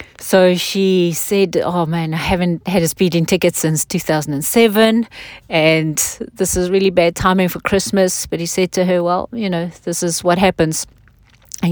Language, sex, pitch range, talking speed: English, female, 160-205 Hz, 175 wpm